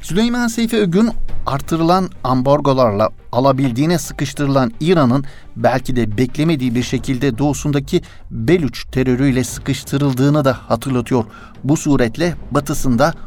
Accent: native